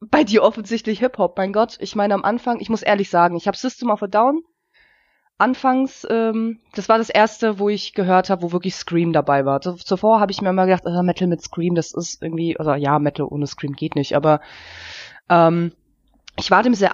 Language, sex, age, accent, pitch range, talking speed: German, female, 20-39, German, 170-220 Hz, 215 wpm